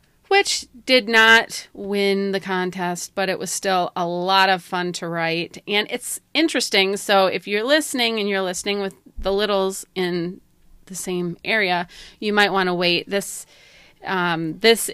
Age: 30-49